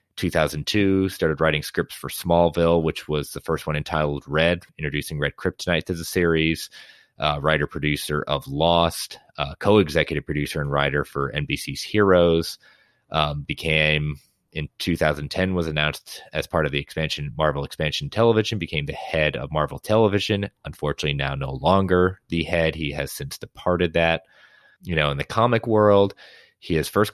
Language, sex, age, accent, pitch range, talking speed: English, male, 30-49, American, 70-85 Hz, 155 wpm